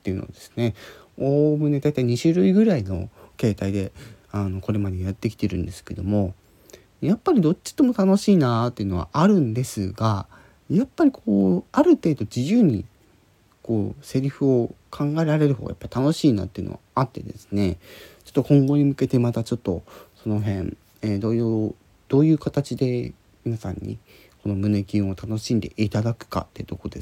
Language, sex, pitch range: Japanese, male, 95-120 Hz